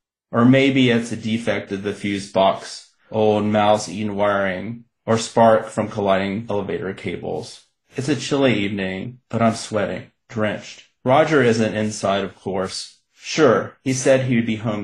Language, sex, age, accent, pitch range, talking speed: English, male, 30-49, American, 100-115 Hz, 155 wpm